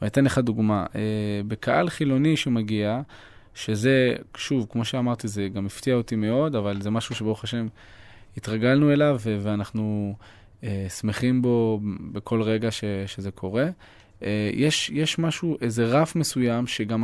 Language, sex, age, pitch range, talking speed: Hebrew, male, 20-39, 110-140 Hz, 135 wpm